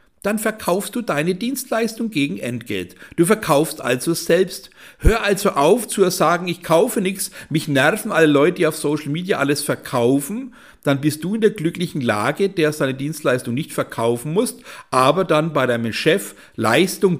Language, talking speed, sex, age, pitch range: German, 165 wpm, male, 50-69, 140-180 Hz